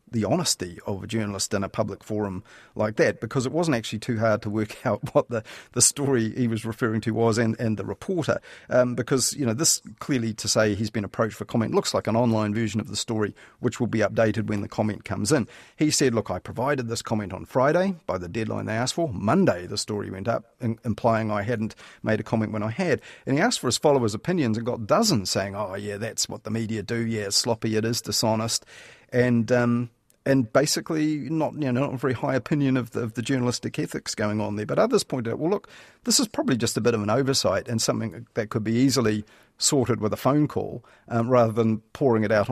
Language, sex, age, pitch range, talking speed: English, male, 40-59, 105-125 Hz, 240 wpm